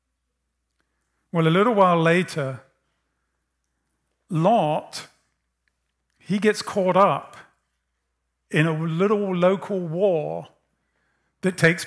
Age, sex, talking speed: 40-59, male, 85 wpm